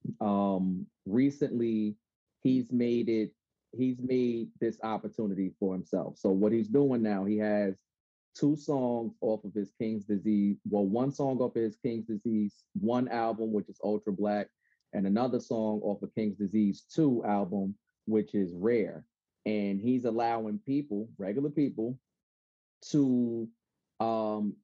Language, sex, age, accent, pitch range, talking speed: English, male, 30-49, American, 105-125 Hz, 145 wpm